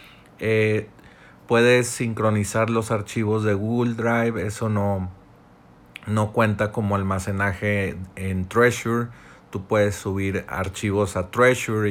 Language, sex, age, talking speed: Spanish, male, 40-59, 110 wpm